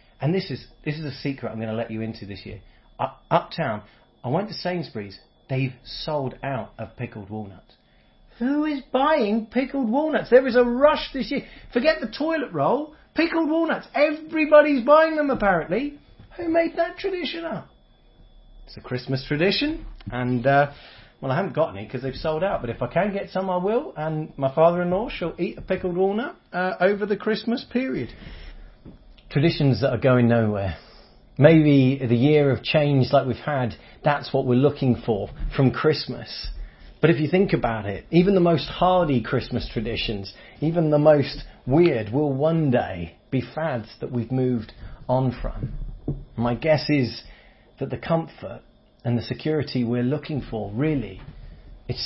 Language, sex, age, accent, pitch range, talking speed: English, male, 30-49, British, 120-195 Hz, 170 wpm